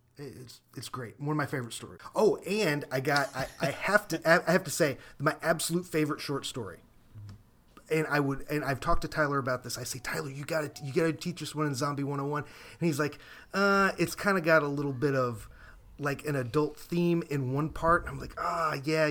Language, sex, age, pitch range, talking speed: English, male, 30-49, 120-150 Hz, 230 wpm